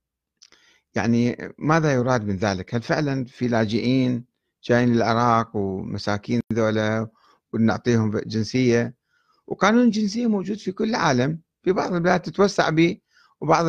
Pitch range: 115-165 Hz